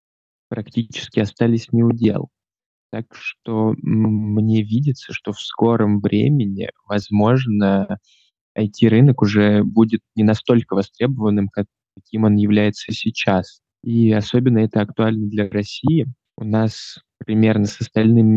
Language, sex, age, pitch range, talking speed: Russian, male, 20-39, 105-115 Hz, 115 wpm